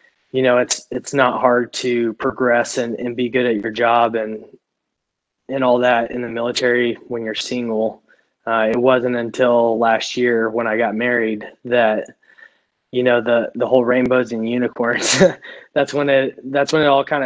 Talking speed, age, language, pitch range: 180 wpm, 20-39, English, 120-135 Hz